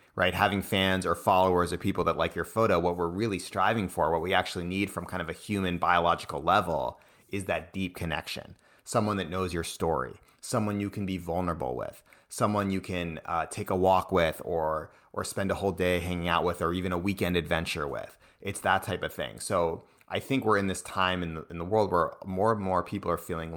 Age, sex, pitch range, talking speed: 30-49, male, 85-100 Hz, 225 wpm